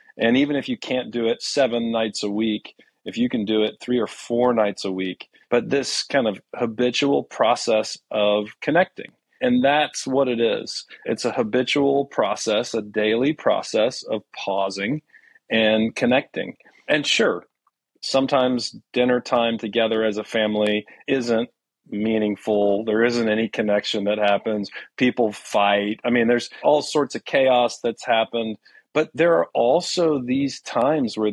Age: 40-59